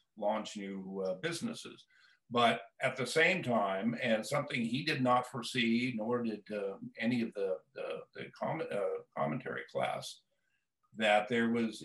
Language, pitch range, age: English, 105-140 Hz, 50-69